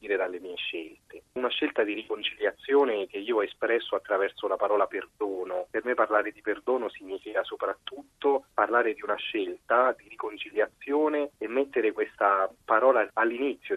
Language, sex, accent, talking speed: Italian, male, native, 145 wpm